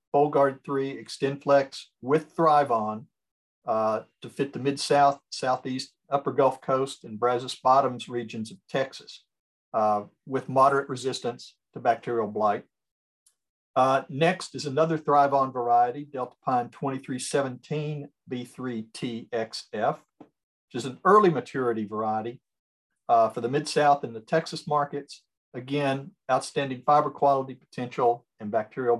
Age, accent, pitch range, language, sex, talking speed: 50-69, American, 120-145 Hz, English, male, 120 wpm